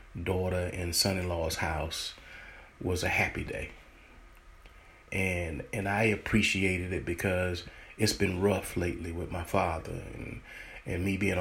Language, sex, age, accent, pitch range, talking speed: English, male, 30-49, American, 85-100 Hz, 130 wpm